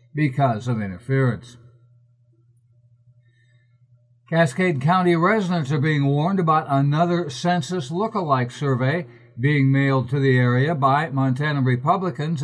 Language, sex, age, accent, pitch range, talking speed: English, male, 60-79, American, 125-165 Hz, 105 wpm